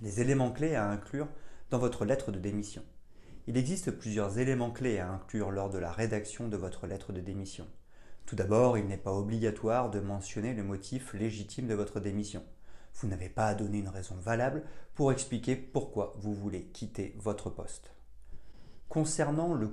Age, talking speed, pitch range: 30-49, 175 wpm, 100-125 Hz